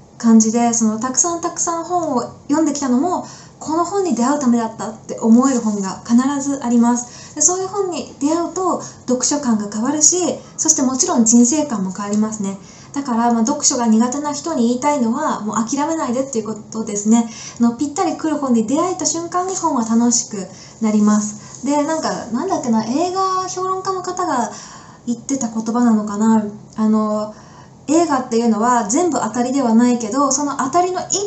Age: 20-39